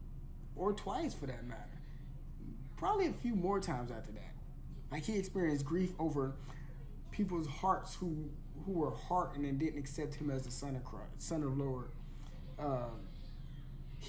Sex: male